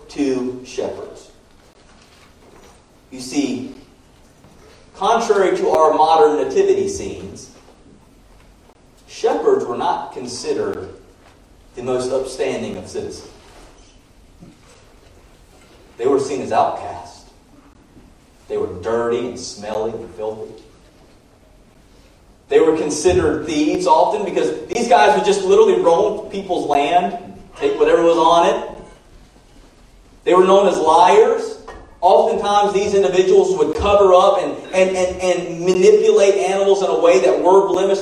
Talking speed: 110 wpm